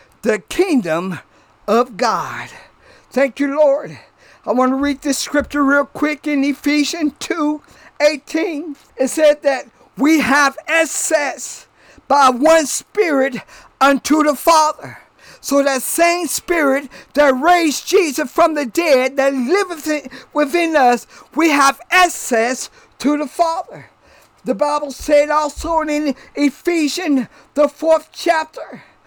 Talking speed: 125 wpm